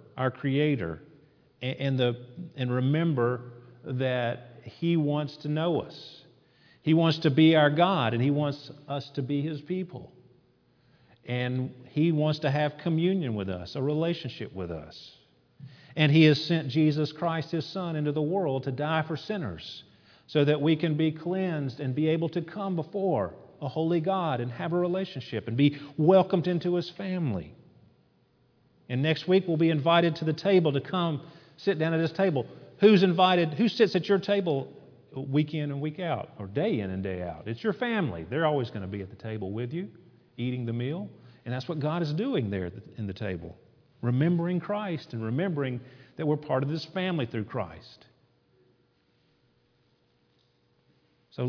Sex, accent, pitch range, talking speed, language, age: male, American, 120-170 Hz, 175 wpm, English, 50-69